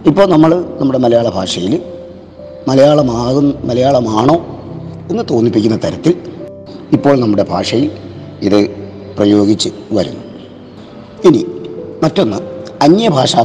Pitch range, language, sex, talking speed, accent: 110-160 Hz, Malayalam, male, 85 wpm, native